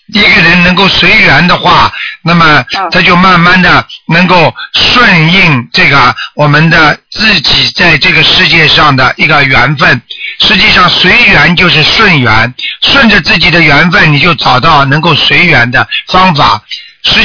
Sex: male